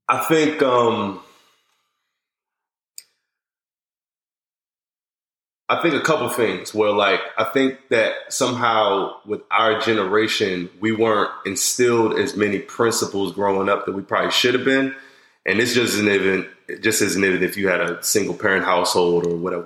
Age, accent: 20-39, American